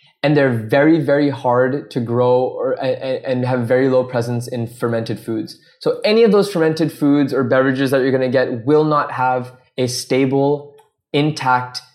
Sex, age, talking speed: male, 20-39, 175 wpm